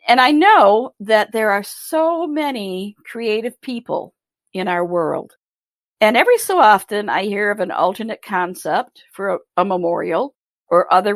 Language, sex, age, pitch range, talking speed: English, female, 50-69, 185-240 Hz, 150 wpm